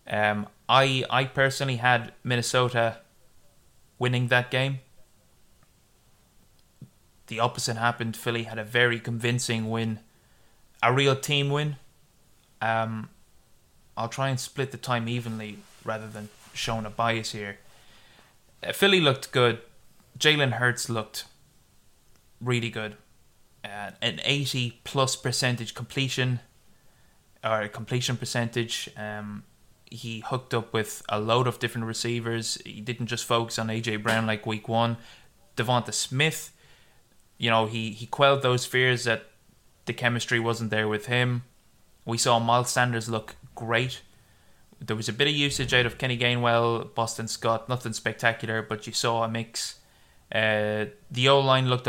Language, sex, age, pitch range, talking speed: English, male, 20-39, 110-125 Hz, 135 wpm